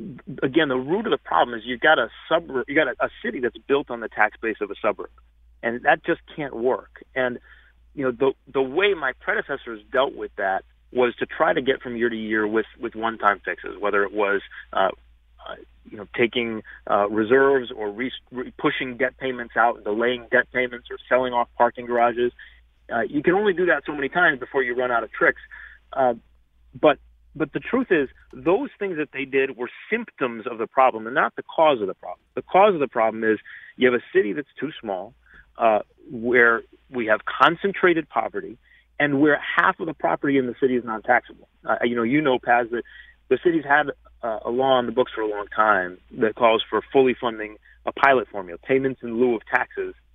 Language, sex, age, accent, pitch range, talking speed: English, male, 30-49, American, 110-135 Hz, 215 wpm